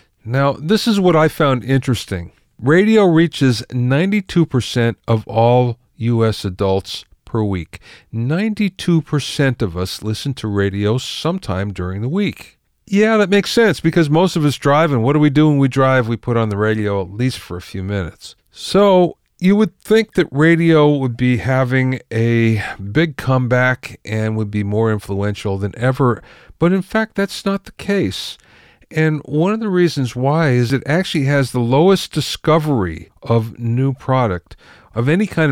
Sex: male